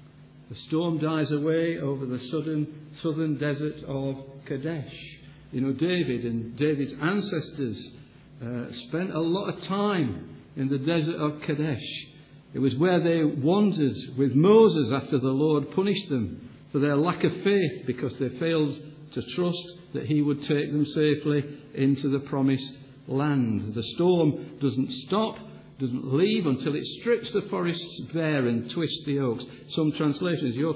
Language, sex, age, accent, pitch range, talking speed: English, male, 60-79, British, 135-165 Hz, 155 wpm